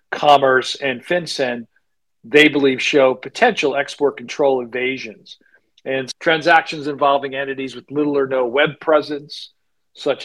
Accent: American